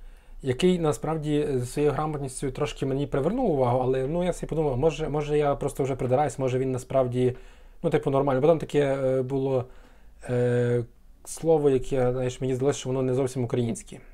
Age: 20-39